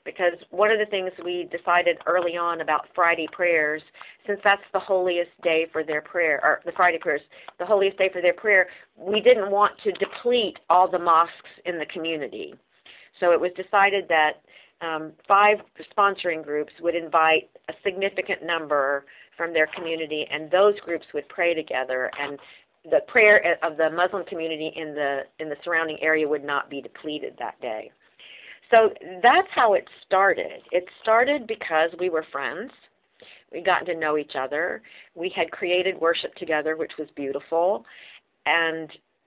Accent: American